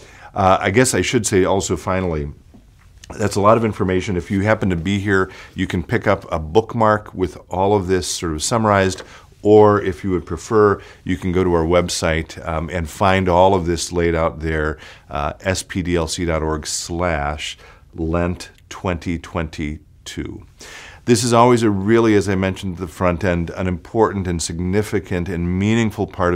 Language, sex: English, male